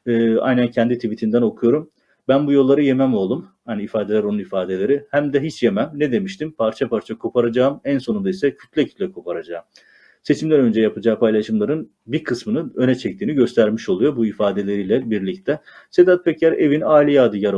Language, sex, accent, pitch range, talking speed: Turkish, male, native, 115-150 Hz, 155 wpm